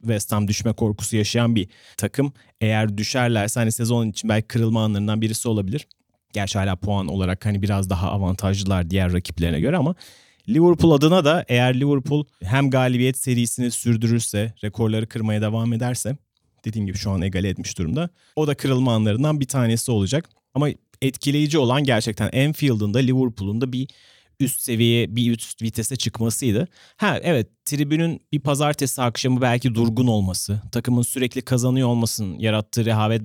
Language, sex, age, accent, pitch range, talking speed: Turkish, male, 30-49, native, 105-130 Hz, 155 wpm